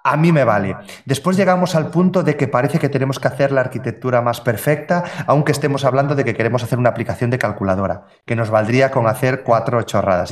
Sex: male